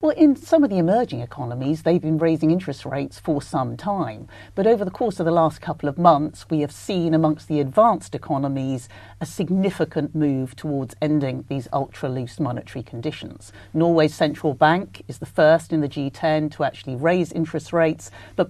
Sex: female